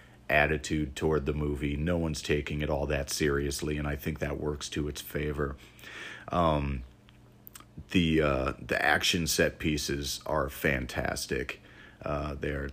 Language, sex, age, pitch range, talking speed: English, male, 40-59, 70-85 Hz, 140 wpm